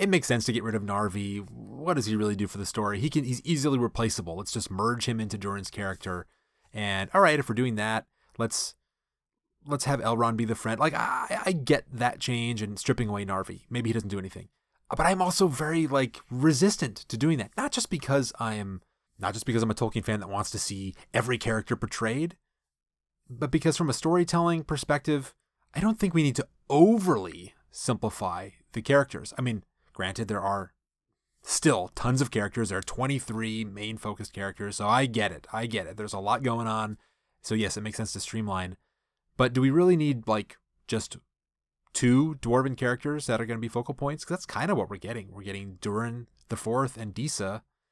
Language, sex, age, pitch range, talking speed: English, male, 30-49, 105-140 Hz, 210 wpm